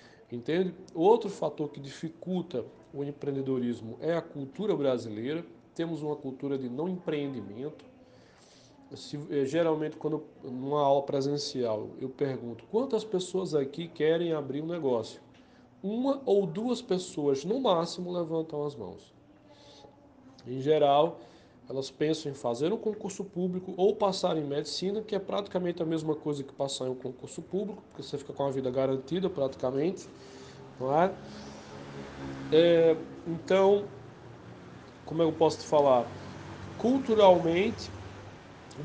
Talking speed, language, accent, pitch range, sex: 130 wpm, Portuguese, Brazilian, 135-180 Hz, male